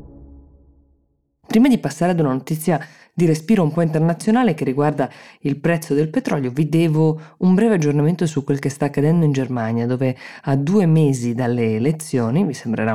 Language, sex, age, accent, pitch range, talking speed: Italian, female, 20-39, native, 130-165 Hz, 170 wpm